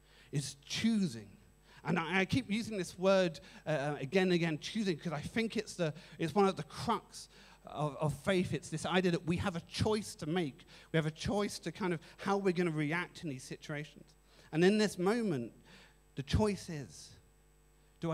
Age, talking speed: 40-59, 195 wpm